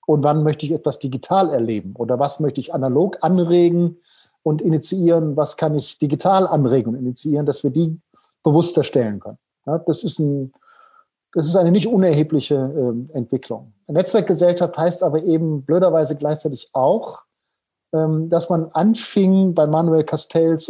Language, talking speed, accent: German, 155 wpm, German